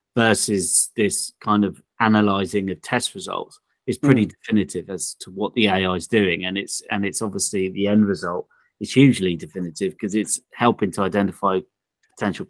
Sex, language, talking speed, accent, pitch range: male, English, 170 wpm, British, 100-125 Hz